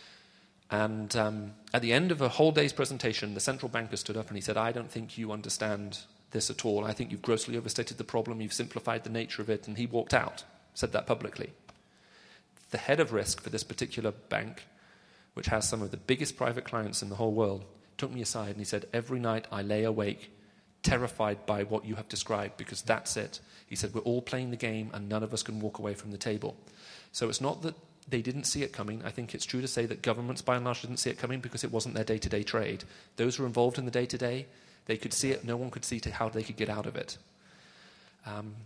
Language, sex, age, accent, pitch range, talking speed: English, male, 40-59, British, 105-125 Hz, 240 wpm